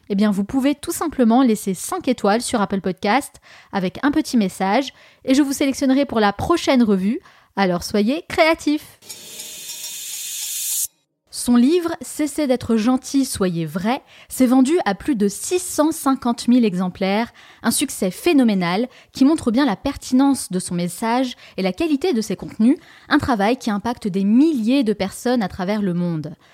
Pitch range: 205-280 Hz